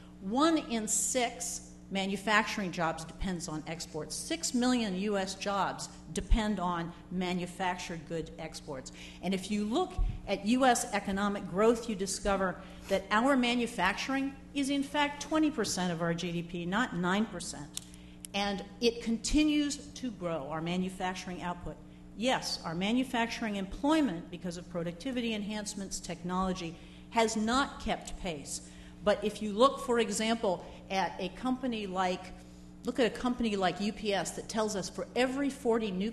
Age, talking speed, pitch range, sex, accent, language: 50-69, 140 wpm, 175-230 Hz, female, American, English